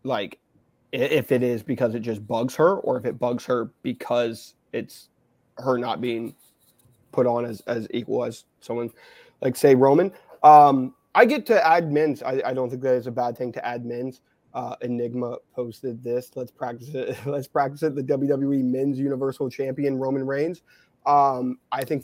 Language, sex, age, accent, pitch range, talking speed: English, male, 20-39, American, 125-150 Hz, 180 wpm